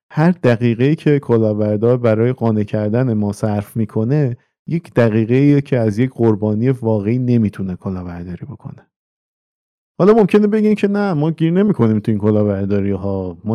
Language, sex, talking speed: Persian, male, 140 wpm